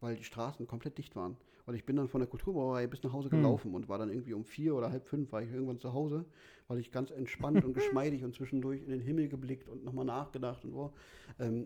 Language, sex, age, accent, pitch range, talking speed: German, male, 50-69, German, 120-145 Hz, 250 wpm